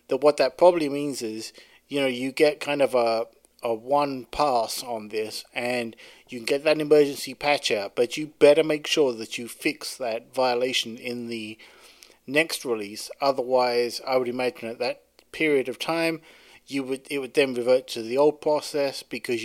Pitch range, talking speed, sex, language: 120-150 Hz, 185 wpm, male, English